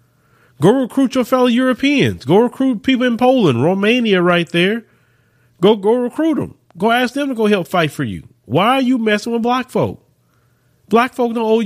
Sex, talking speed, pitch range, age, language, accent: male, 190 wpm, 125-200 Hz, 30-49, English, American